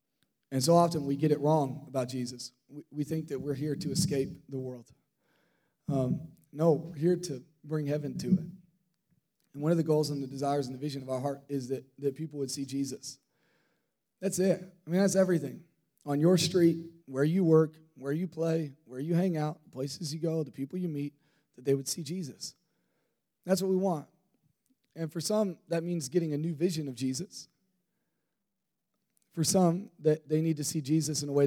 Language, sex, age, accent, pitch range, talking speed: English, male, 30-49, American, 140-170 Hz, 200 wpm